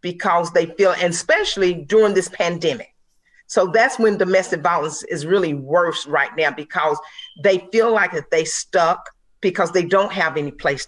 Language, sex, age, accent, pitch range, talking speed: English, female, 40-59, American, 160-200 Hz, 165 wpm